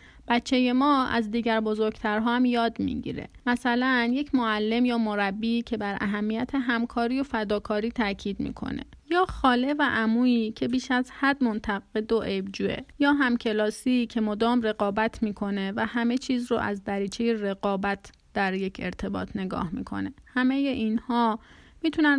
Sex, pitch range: female, 215-265 Hz